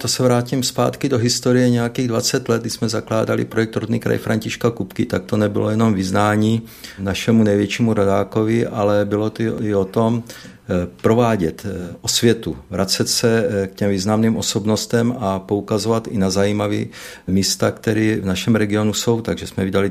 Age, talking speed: 50-69, 160 wpm